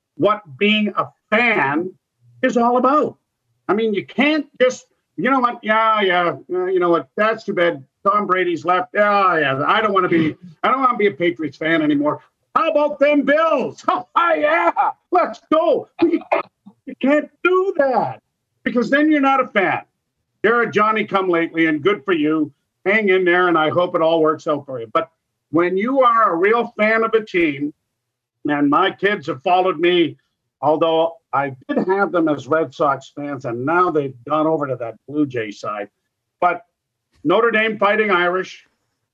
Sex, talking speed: male, 185 wpm